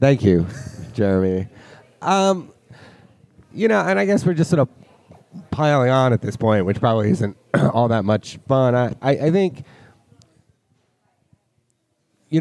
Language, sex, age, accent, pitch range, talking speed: English, male, 30-49, American, 110-150 Hz, 145 wpm